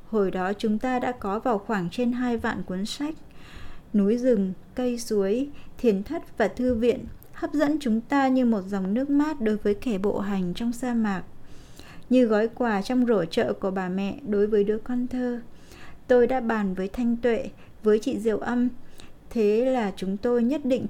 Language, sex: Vietnamese, female